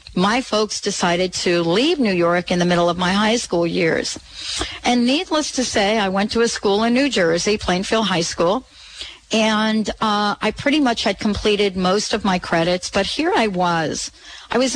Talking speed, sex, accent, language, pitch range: 190 wpm, female, American, English, 185-245 Hz